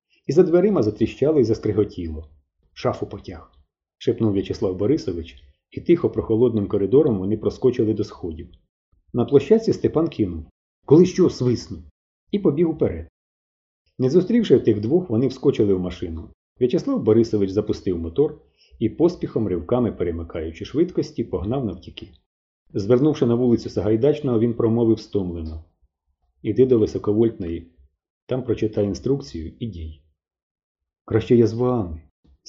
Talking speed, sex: 125 wpm, male